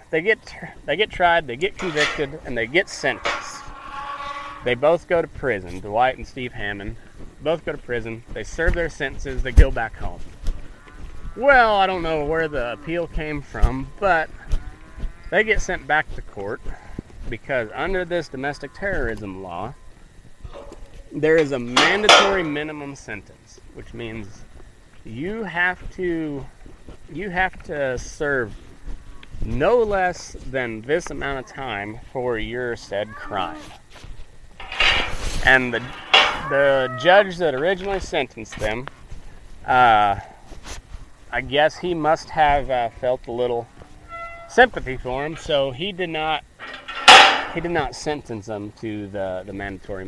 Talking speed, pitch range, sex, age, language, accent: 140 wpm, 105-165 Hz, male, 30-49, English, American